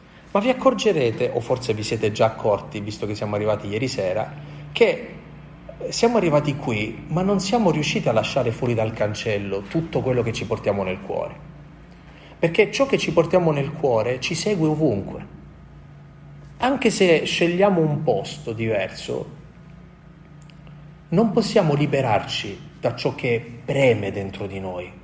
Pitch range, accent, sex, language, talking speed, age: 110-160 Hz, native, male, Italian, 145 wpm, 30-49